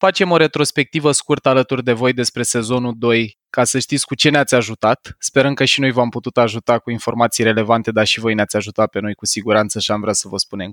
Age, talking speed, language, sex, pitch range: 20-39, 235 wpm, Romanian, male, 120-160 Hz